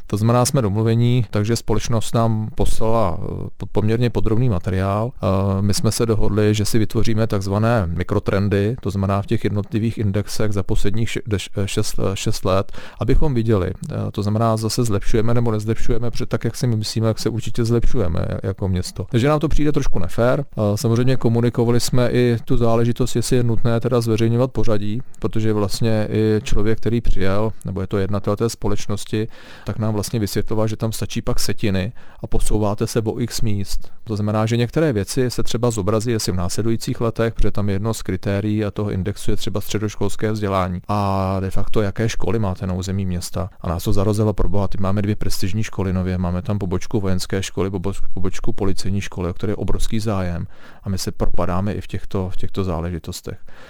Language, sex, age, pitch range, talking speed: Czech, male, 40-59, 95-115 Hz, 185 wpm